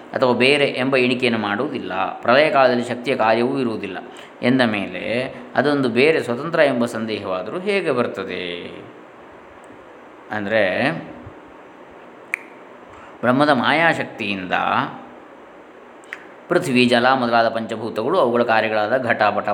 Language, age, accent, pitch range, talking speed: Kannada, 20-39, native, 110-145 Hz, 90 wpm